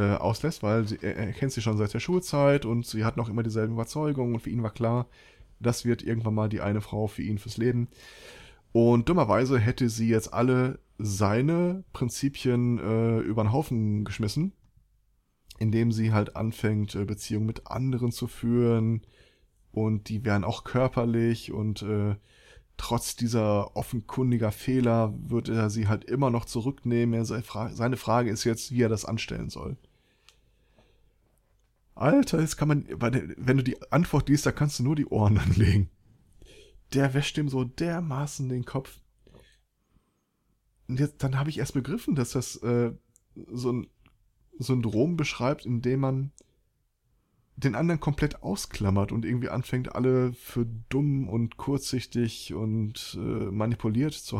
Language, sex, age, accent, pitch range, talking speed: German, male, 20-39, German, 110-130 Hz, 150 wpm